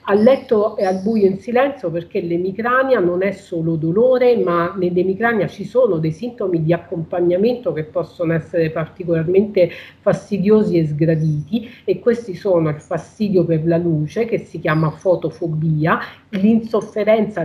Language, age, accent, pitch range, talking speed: Italian, 40-59, native, 165-205 Hz, 140 wpm